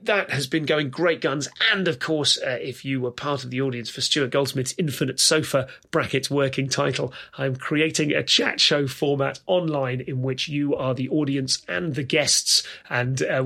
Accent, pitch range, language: British, 130-145 Hz, English